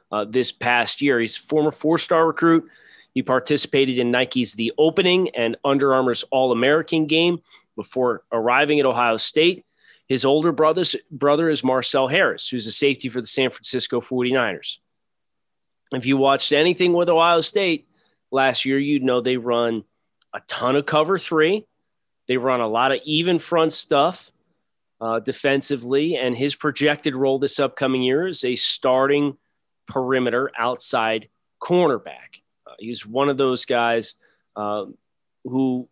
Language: English